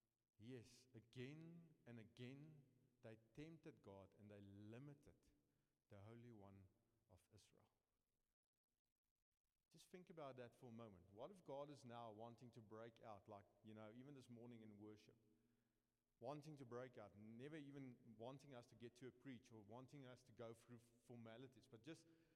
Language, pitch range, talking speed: English, 115-140 Hz, 165 wpm